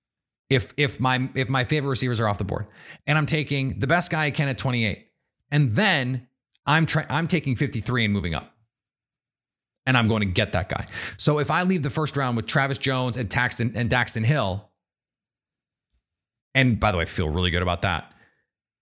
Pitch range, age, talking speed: 110-135 Hz, 30-49, 200 wpm